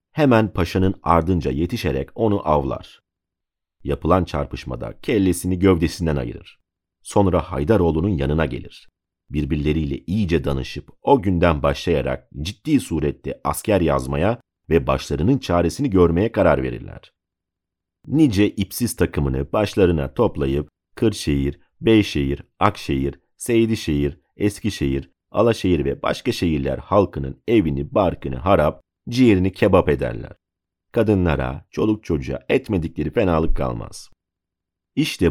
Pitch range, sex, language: 70-95 Hz, male, Turkish